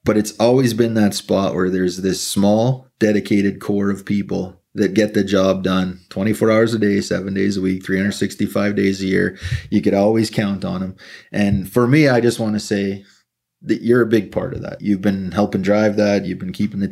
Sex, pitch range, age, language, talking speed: male, 95-110 Hz, 30-49, English, 215 wpm